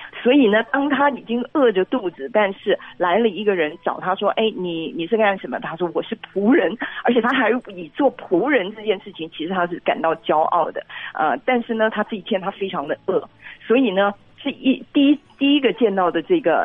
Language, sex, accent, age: Chinese, female, native, 40-59